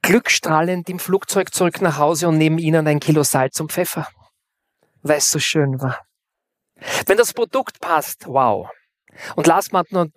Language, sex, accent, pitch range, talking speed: German, male, German, 135-180 Hz, 165 wpm